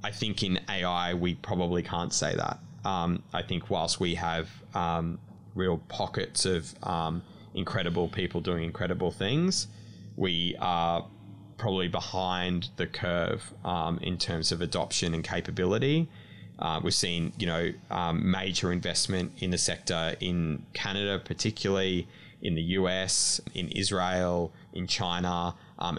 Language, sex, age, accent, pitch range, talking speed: English, male, 20-39, Australian, 85-100 Hz, 140 wpm